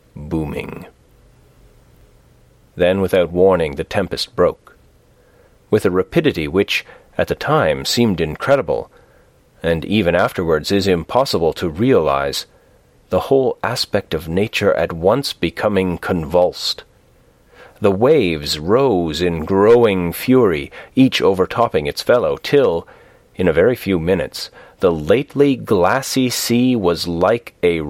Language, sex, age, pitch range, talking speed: English, male, 40-59, 85-115 Hz, 120 wpm